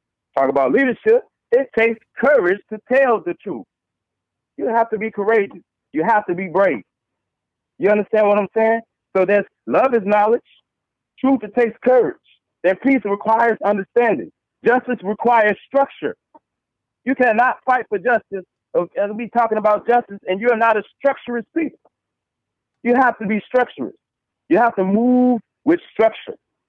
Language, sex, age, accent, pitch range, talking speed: English, male, 40-59, American, 200-250 Hz, 155 wpm